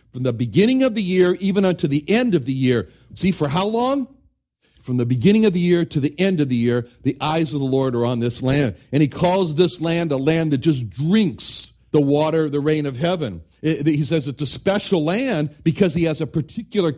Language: English